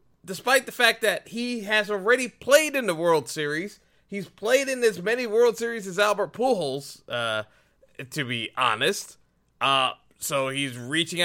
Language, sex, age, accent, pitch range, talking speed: English, male, 30-49, American, 155-210 Hz, 160 wpm